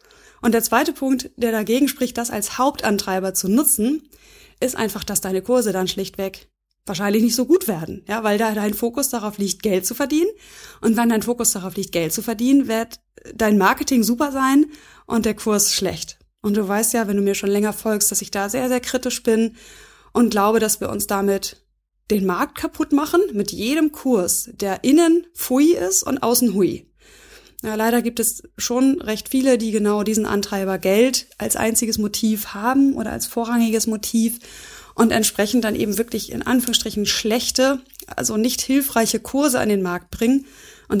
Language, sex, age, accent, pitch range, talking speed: German, female, 20-39, German, 205-250 Hz, 185 wpm